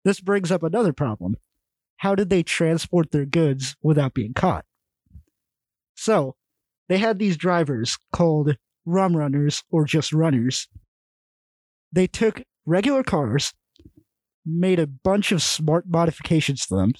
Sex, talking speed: male, 130 wpm